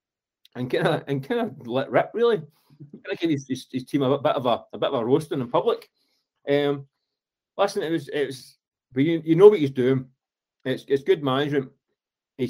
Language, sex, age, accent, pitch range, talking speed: English, male, 30-49, British, 110-135 Hz, 210 wpm